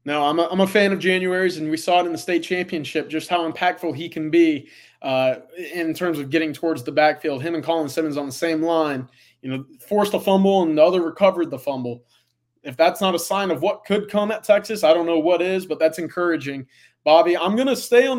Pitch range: 150-205 Hz